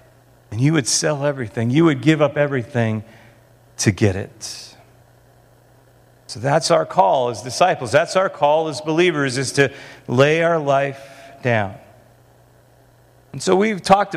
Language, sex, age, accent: English, male, 40-59, American